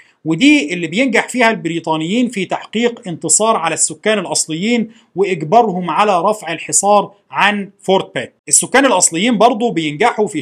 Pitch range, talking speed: 160-225 Hz, 130 wpm